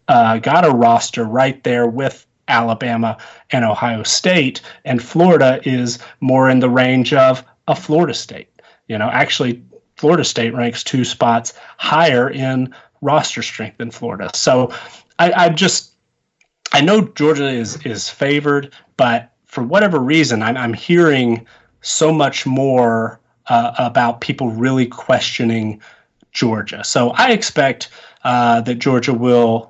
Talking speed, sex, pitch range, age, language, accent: 140 wpm, male, 115-135 Hz, 30-49, English, American